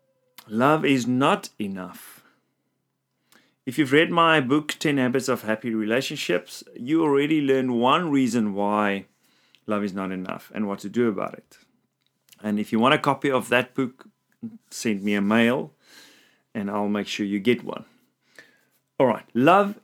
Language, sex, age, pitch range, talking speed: English, male, 40-59, 105-140 Hz, 160 wpm